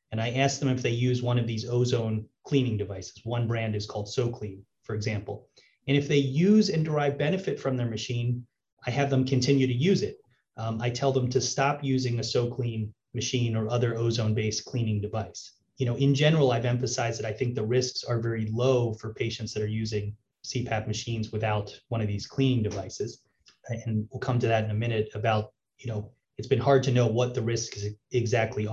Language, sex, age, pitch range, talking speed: English, male, 30-49, 110-135 Hz, 205 wpm